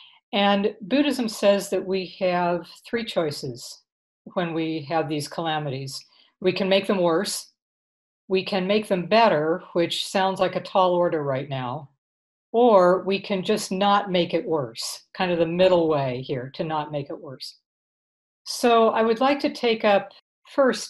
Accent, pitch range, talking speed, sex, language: American, 165-210 Hz, 165 wpm, female, English